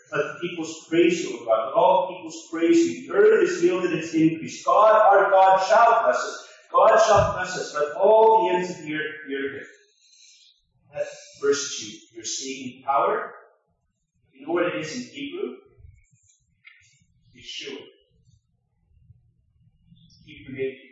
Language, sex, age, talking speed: English, male, 40-59, 165 wpm